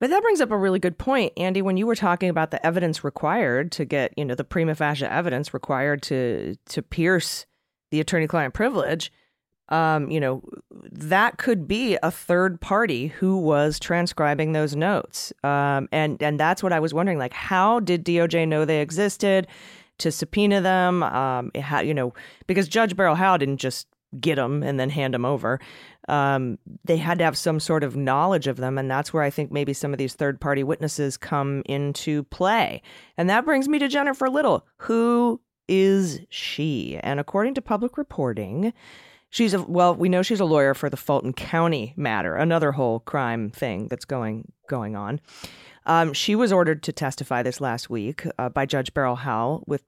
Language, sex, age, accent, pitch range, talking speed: English, female, 30-49, American, 140-185 Hz, 190 wpm